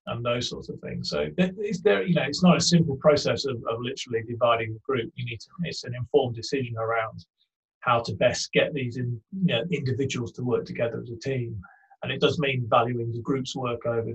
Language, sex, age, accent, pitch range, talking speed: English, male, 30-49, British, 115-145 Hz, 225 wpm